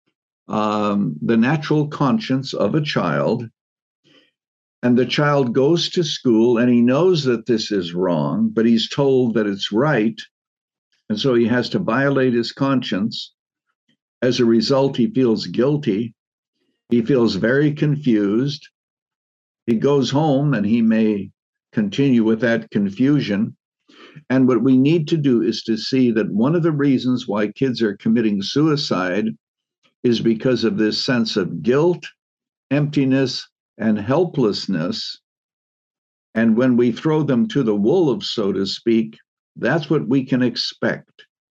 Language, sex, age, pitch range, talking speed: English, male, 60-79, 110-140 Hz, 145 wpm